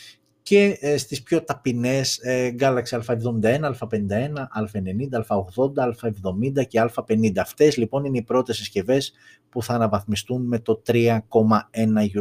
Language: Greek